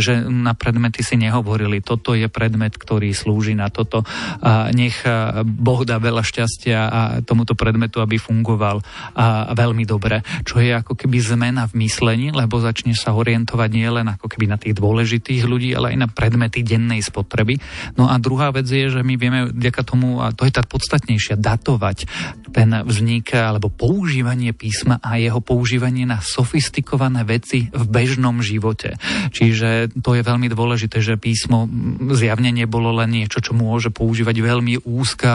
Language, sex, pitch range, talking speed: Slovak, male, 110-125 Hz, 165 wpm